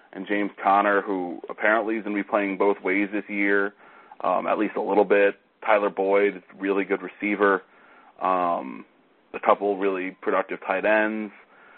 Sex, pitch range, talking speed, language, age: male, 95-110 Hz, 165 wpm, English, 30-49